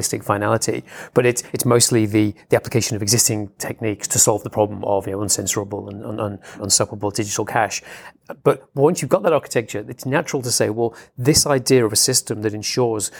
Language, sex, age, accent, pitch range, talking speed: English, male, 30-49, British, 105-125 Hz, 195 wpm